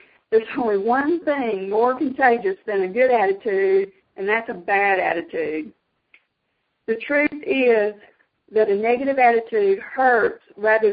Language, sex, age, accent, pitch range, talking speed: English, female, 50-69, American, 215-315 Hz, 130 wpm